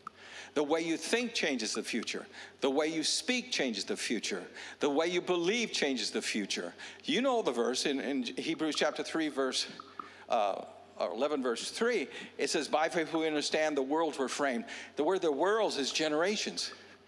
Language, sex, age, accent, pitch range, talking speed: English, male, 50-69, American, 140-195 Hz, 185 wpm